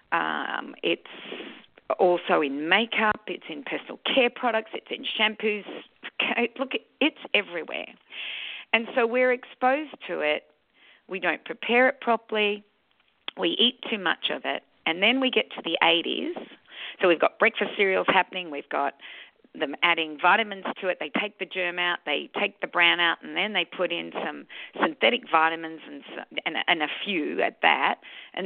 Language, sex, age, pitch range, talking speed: English, female, 40-59, 175-250 Hz, 165 wpm